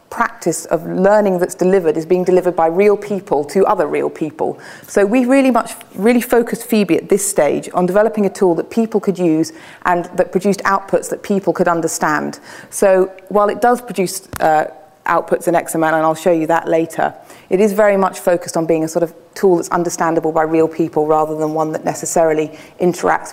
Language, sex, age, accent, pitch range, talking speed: English, female, 30-49, British, 165-210 Hz, 200 wpm